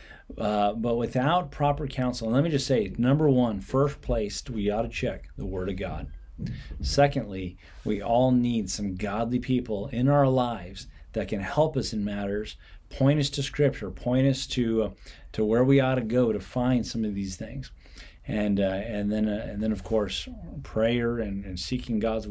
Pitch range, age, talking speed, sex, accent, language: 95-120 Hz, 30-49, 190 wpm, male, American, English